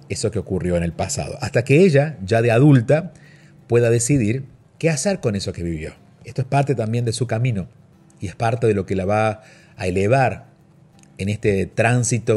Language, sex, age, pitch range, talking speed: Spanish, male, 40-59, 100-140 Hz, 195 wpm